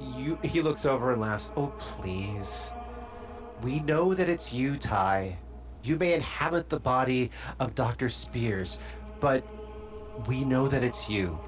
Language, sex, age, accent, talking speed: English, male, 30-49, American, 140 wpm